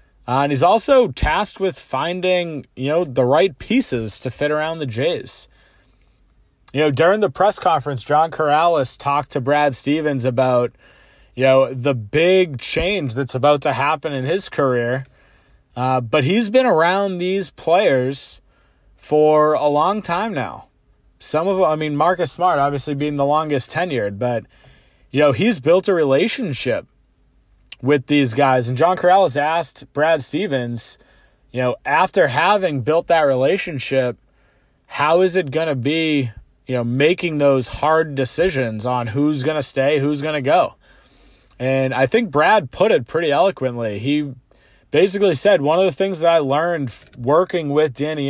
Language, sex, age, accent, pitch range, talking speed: English, male, 30-49, American, 130-170 Hz, 165 wpm